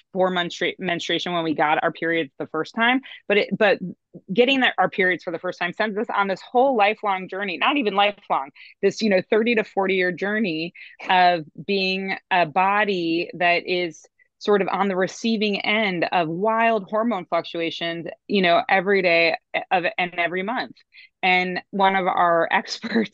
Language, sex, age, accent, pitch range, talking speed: English, female, 20-39, American, 165-205 Hz, 180 wpm